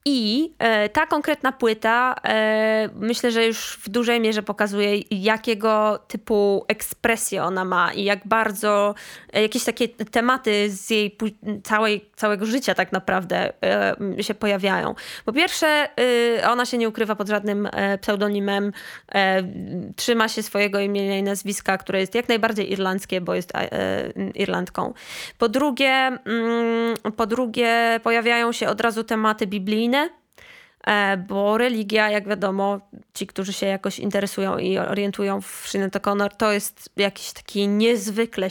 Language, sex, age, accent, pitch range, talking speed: Polish, female, 20-39, native, 200-230 Hz, 130 wpm